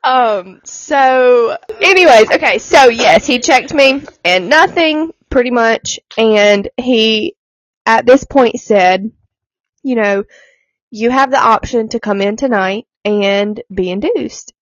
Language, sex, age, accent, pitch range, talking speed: English, female, 20-39, American, 200-260 Hz, 130 wpm